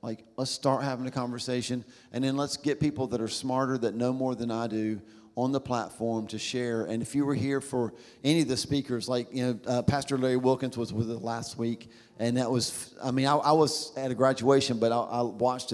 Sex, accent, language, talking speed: male, American, English, 235 wpm